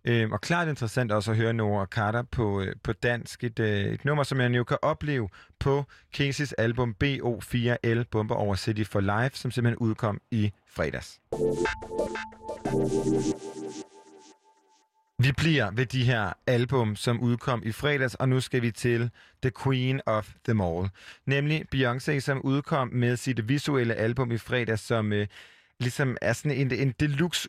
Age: 30-49